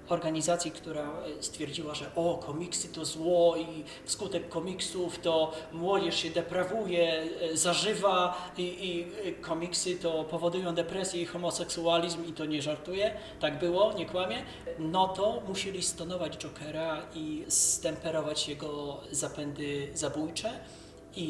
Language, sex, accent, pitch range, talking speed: Polish, male, native, 145-175 Hz, 120 wpm